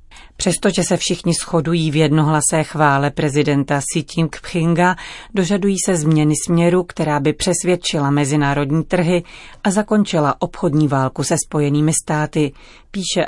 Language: Czech